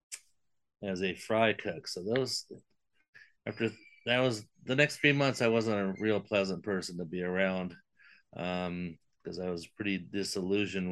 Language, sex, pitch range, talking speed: English, male, 90-115 Hz, 155 wpm